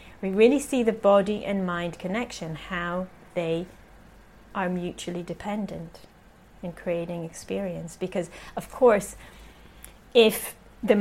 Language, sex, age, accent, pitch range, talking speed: English, female, 30-49, British, 185-225 Hz, 115 wpm